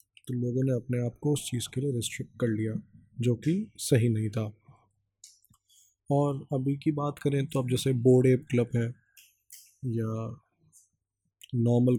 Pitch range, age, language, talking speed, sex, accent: 115-130 Hz, 20-39, English, 155 wpm, male, Indian